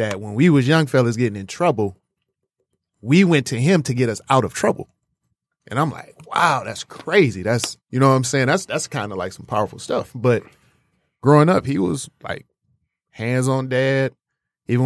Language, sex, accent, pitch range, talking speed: English, male, American, 105-130 Hz, 195 wpm